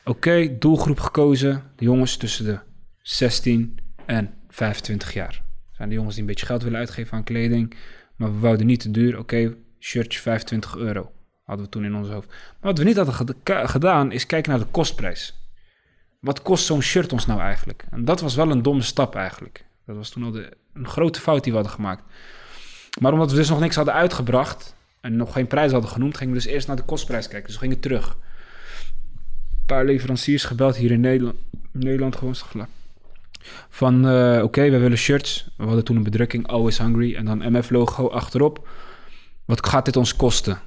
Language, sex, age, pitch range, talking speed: Dutch, male, 20-39, 110-130 Hz, 195 wpm